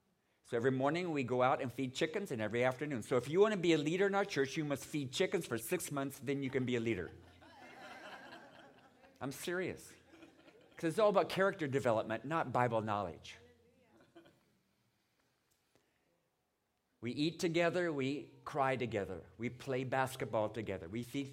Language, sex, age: English, male, 50-69